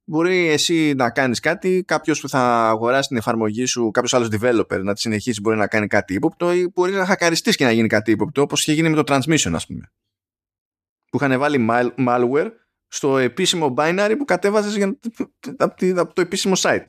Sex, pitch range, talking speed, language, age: male, 115-175 Hz, 190 wpm, Greek, 20-39